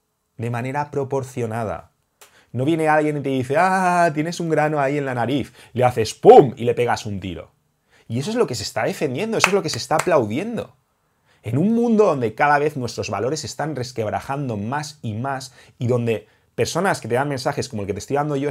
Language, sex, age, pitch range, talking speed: English, male, 30-49, 115-150 Hz, 215 wpm